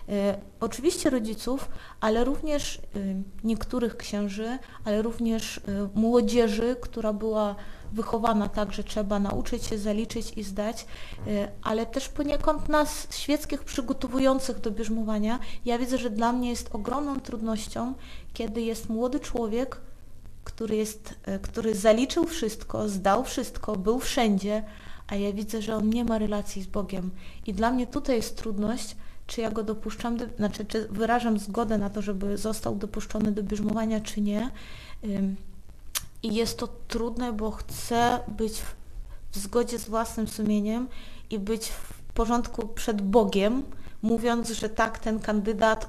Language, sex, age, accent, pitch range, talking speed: Polish, female, 30-49, native, 210-235 Hz, 135 wpm